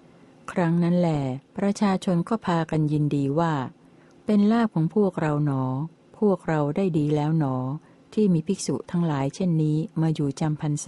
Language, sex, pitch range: Thai, female, 145-175 Hz